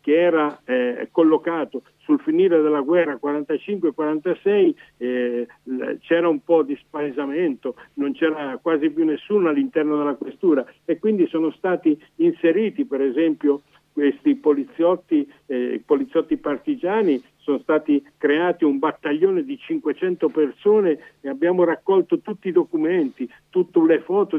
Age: 60-79